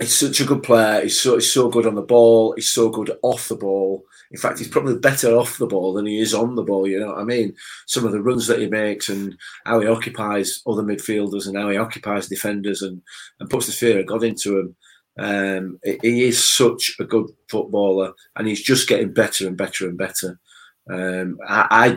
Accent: British